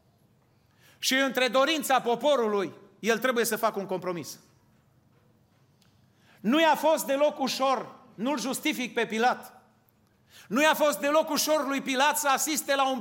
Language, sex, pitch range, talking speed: Romanian, male, 225-285 Hz, 140 wpm